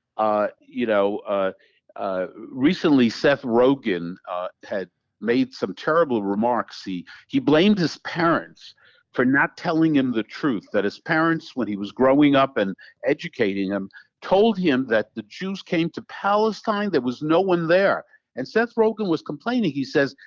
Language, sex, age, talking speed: English, male, 60-79, 165 wpm